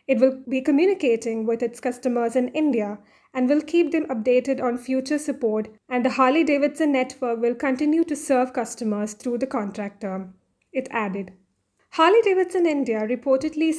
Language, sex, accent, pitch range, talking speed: English, female, Indian, 230-290 Hz, 150 wpm